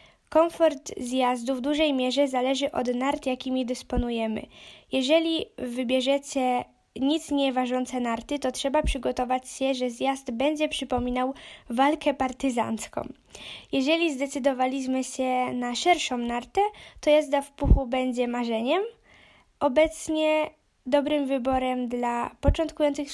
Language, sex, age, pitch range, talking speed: Polish, female, 10-29, 250-290 Hz, 110 wpm